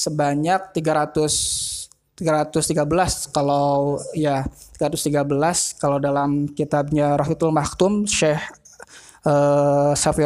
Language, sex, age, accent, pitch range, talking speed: Indonesian, male, 20-39, native, 145-160 Hz, 80 wpm